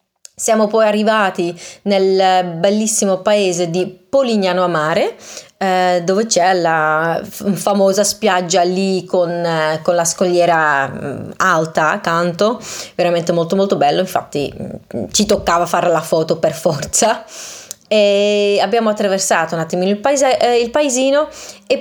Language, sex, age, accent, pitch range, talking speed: Italian, female, 20-39, native, 170-225 Hz, 125 wpm